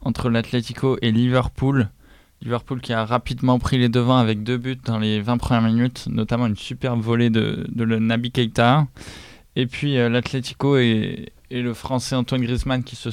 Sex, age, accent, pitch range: male, 20-39, French, 110-125 Hz